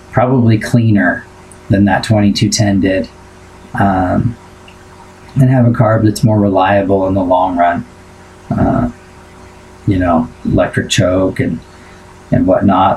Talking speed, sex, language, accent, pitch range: 120 wpm, male, English, American, 95-110 Hz